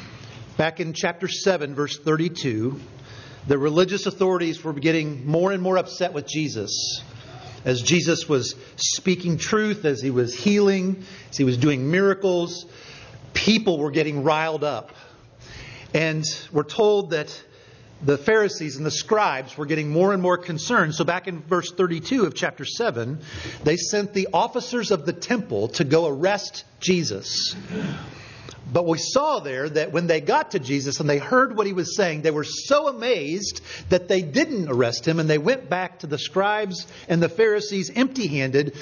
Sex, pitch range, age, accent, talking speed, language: male, 145-195 Hz, 40-59, American, 165 wpm, English